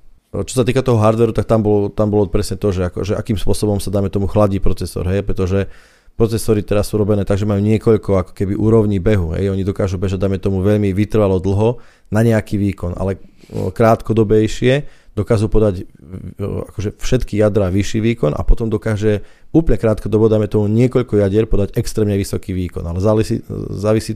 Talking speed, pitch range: 175 wpm, 95-110 Hz